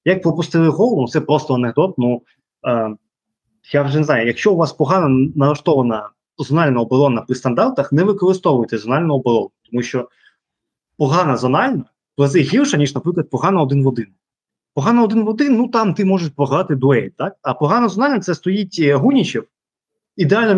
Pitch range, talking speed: 125-180 Hz, 165 wpm